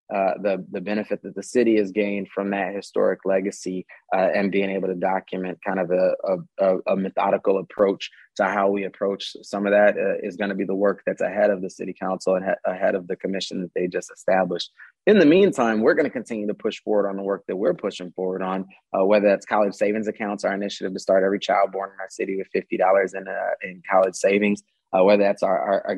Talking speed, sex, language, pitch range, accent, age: 230 wpm, male, English, 95-105 Hz, American, 20-39